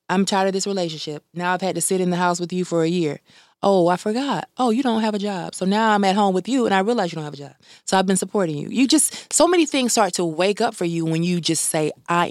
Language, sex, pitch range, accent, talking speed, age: English, female, 175-215 Hz, American, 305 wpm, 20-39